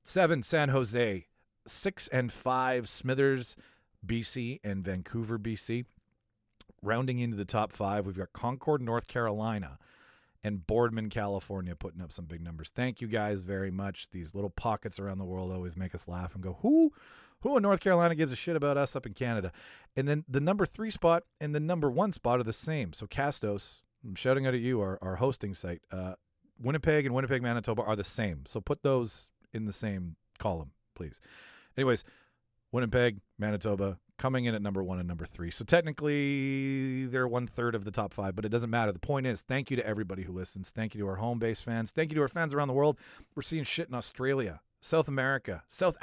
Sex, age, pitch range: male, 40-59, 100-135 Hz